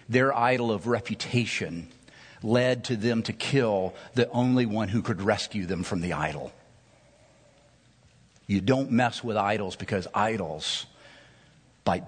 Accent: American